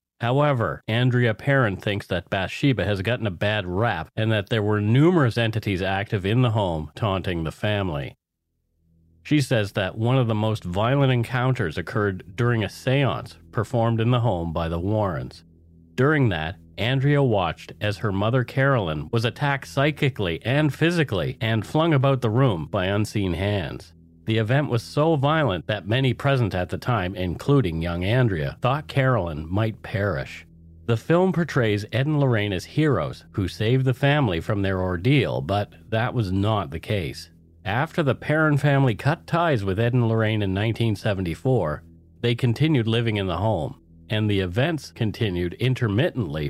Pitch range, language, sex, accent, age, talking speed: 90-130 Hz, English, male, American, 40-59, 165 wpm